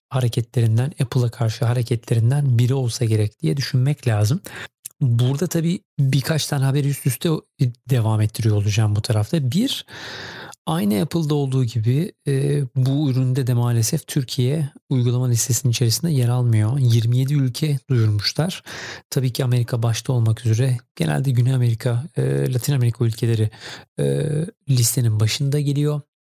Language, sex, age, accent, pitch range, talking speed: Turkish, male, 40-59, native, 115-135 Hz, 130 wpm